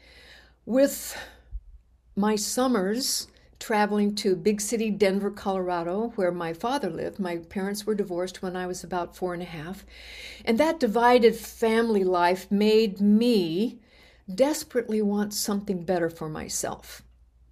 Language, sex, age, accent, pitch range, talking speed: English, female, 60-79, American, 180-230 Hz, 130 wpm